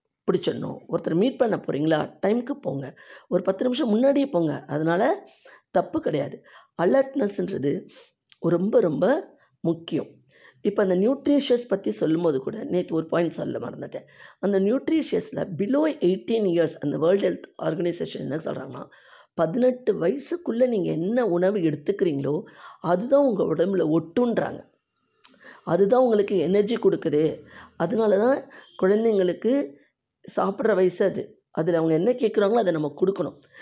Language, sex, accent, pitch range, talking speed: Tamil, female, native, 160-235 Hz, 120 wpm